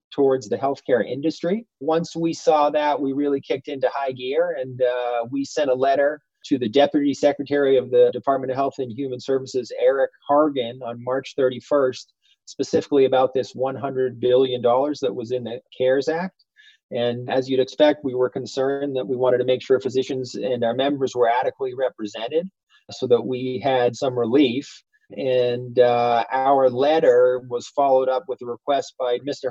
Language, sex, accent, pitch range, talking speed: English, male, American, 120-140 Hz, 175 wpm